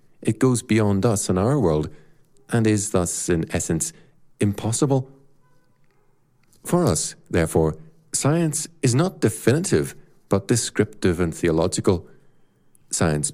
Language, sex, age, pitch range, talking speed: English, male, 50-69, 85-130 Hz, 115 wpm